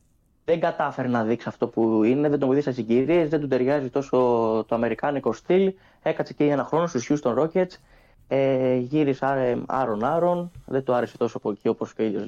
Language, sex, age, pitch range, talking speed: Greek, male, 20-39, 115-145 Hz, 180 wpm